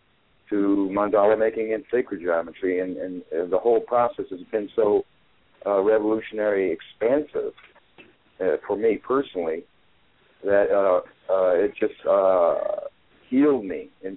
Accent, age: American, 60-79